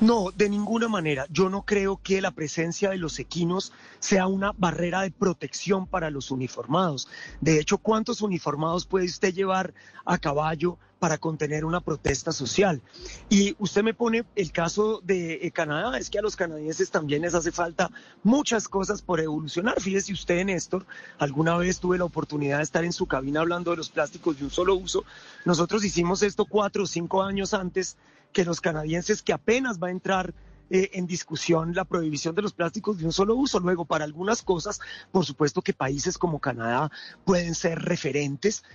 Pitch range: 160-200 Hz